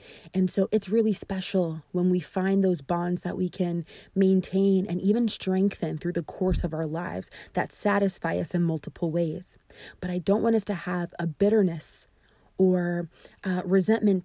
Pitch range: 180-200 Hz